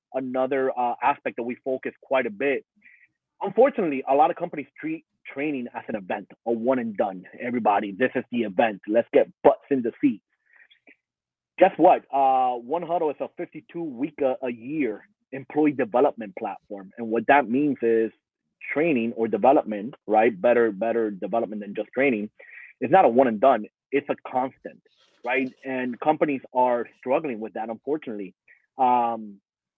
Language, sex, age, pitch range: English, male, 30-49, 115-150 Hz